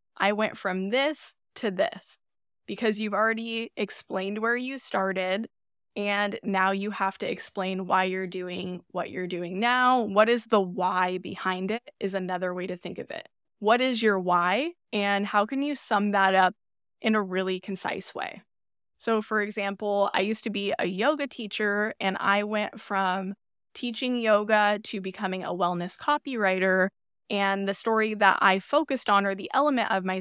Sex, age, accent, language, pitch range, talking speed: female, 10-29, American, English, 190-220 Hz, 175 wpm